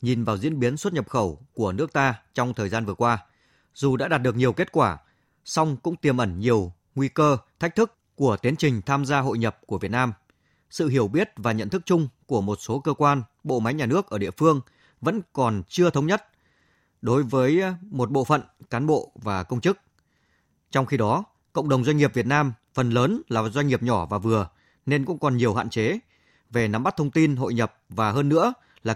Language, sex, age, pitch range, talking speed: Vietnamese, male, 20-39, 110-150 Hz, 225 wpm